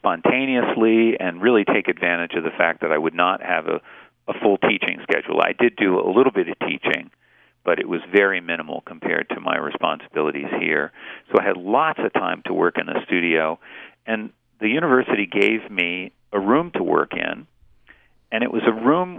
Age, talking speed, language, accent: 40-59, 195 wpm, English, American